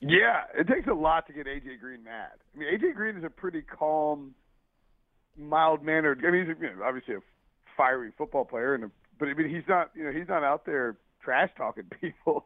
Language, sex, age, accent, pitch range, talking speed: English, male, 40-59, American, 140-175 Hz, 225 wpm